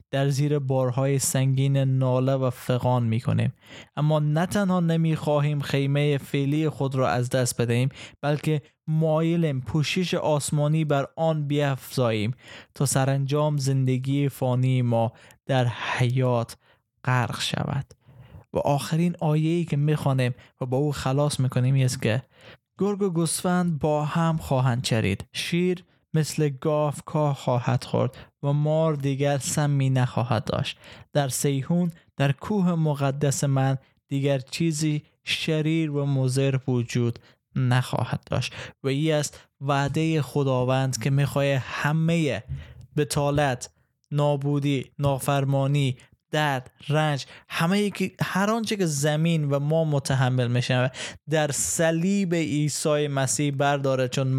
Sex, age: male, 20-39